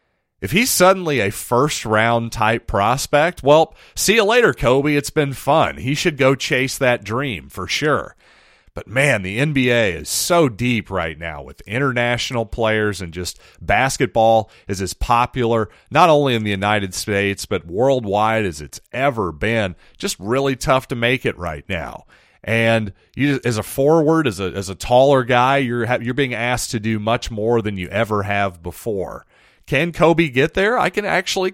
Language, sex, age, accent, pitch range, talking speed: English, male, 40-59, American, 105-145 Hz, 175 wpm